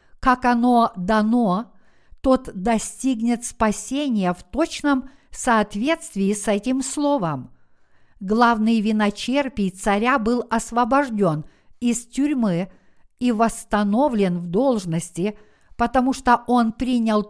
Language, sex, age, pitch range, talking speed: Russian, female, 50-69, 205-250 Hz, 95 wpm